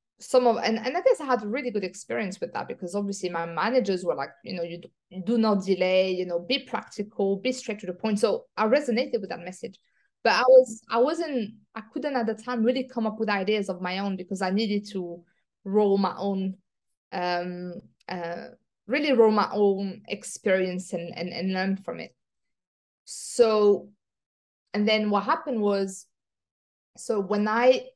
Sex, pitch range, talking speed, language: female, 185-225 Hz, 190 wpm, English